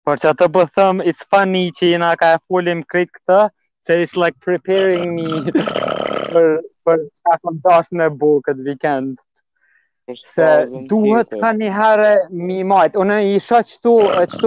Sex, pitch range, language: male, 160-210 Hz, English